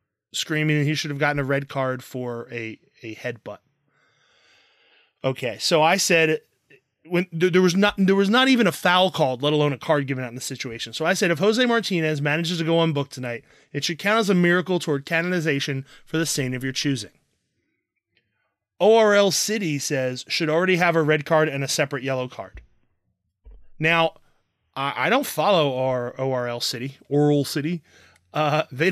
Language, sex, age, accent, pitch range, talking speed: English, male, 20-39, American, 135-170 Hz, 185 wpm